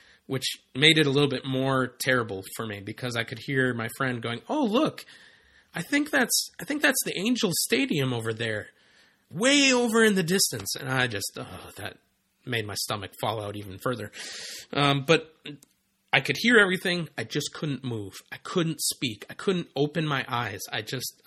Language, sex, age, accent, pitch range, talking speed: English, male, 30-49, American, 115-145 Hz, 185 wpm